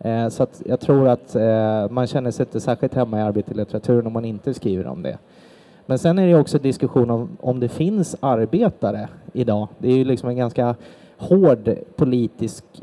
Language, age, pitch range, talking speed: Swedish, 30-49, 115-140 Hz, 190 wpm